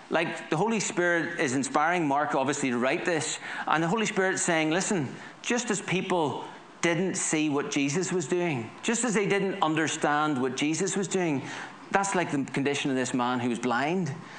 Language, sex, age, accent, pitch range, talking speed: English, male, 30-49, Irish, 145-185 Hz, 190 wpm